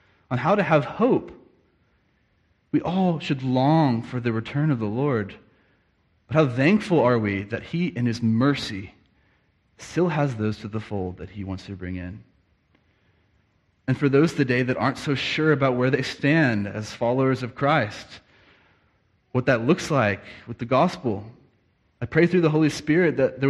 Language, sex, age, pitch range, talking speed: English, male, 30-49, 105-140 Hz, 175 wpm